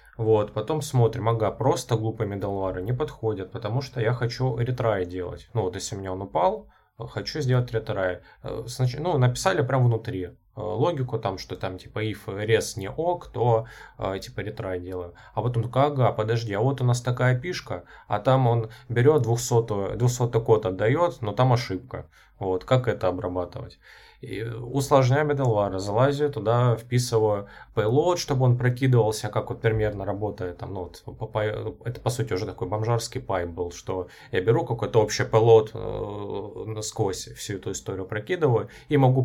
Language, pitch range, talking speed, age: Russian, 100-125 Hz, 165 wpm, 20-39